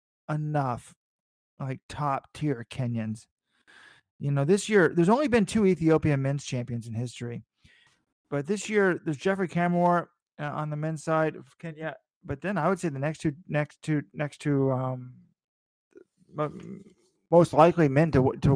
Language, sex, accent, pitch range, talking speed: English, male, American, 130-165 Hz, 160 wpm